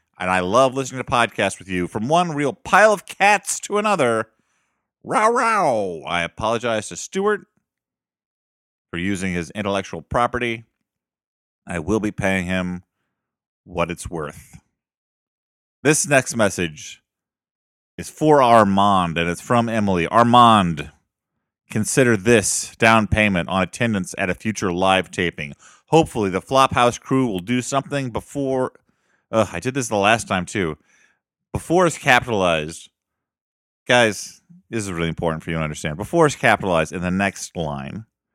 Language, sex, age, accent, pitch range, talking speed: English, male, 30-49, American, 90-125 Hz, 140 wpm